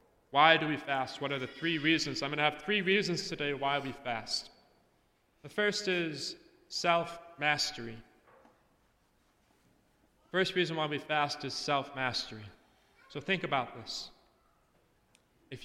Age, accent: 30-49, American